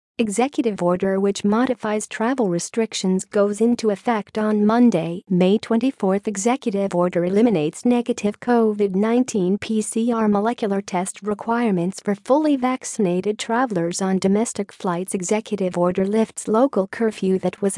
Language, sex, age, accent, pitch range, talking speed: English, female, 40-59, American, 195-235 Hz, 120 wpm